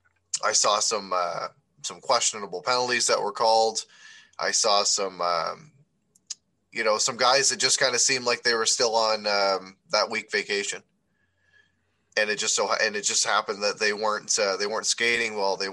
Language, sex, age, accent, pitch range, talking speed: English, male, 20-39, American, 100-135 Hz, 185 wpm